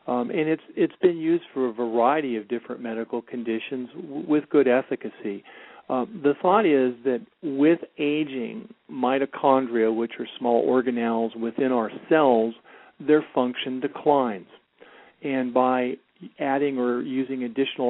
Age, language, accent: 50-69, English, American